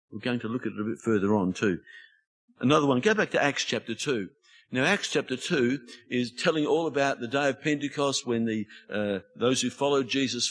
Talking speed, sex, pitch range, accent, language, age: 215 wpm, male, 110-140 Hz, Australian, English, 50-69